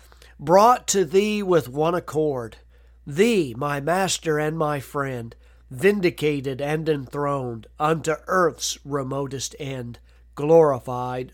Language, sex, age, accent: English, male, 40-59, American